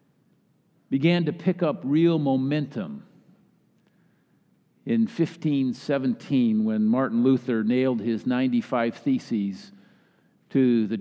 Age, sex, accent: 50-69, male, American